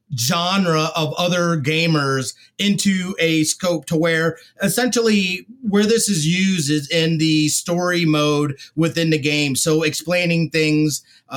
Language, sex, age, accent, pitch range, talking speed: English, male, 30-49, American, 150-195 Hz, 130 wpm